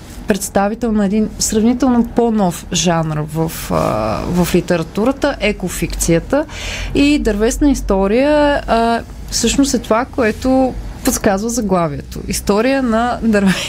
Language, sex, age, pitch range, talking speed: Bulgarian, female, 20-39, 195-245 Hz, 100 wpm